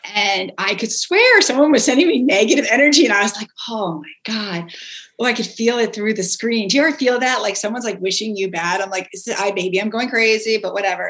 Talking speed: 265 wpm